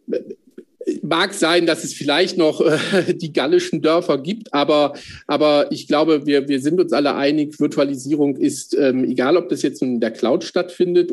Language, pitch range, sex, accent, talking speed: German, 130-175 Hz, male, German, 165 wpm